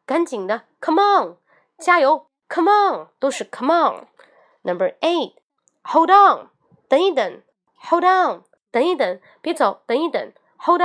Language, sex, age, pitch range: Chinese, female, 20-39, 205-330 Hz